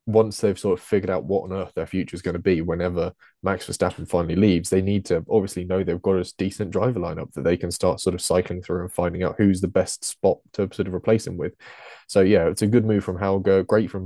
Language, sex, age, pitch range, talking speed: English, male, 20-39, 90-110 Hz, 265 wpm